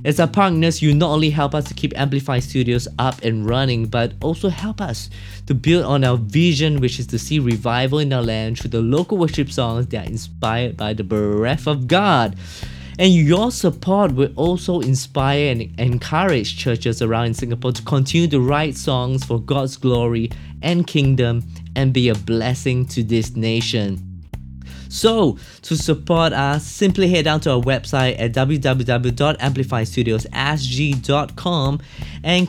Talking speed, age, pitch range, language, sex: 160 wpm, 20-39, 115-175 Hz, English, male